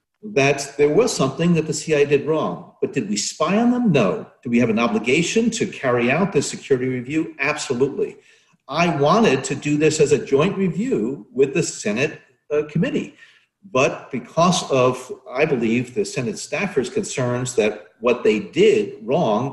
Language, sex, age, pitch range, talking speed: English, male, 50-69, 140-215 Hz, 170 wpm